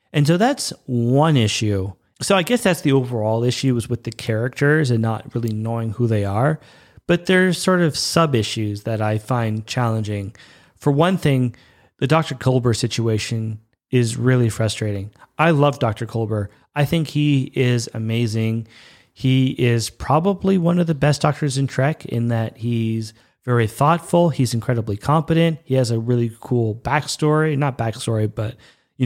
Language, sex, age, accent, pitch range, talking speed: English, male, 30-49, American, 115-145 Hz, 165 wpm